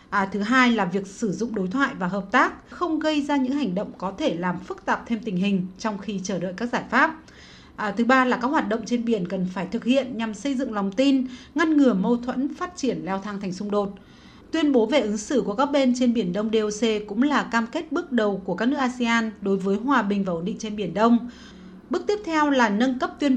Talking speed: 255 wpm